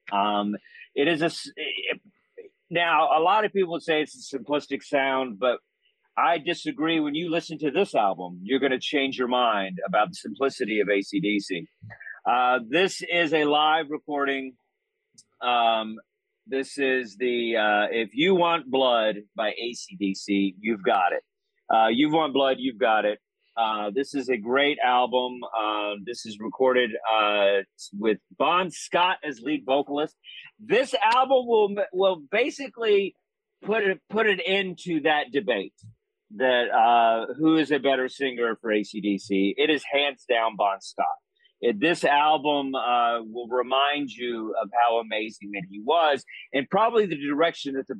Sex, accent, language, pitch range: male, American, English, 115-170 Hz